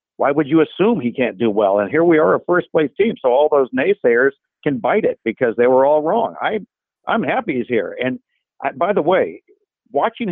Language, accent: English, American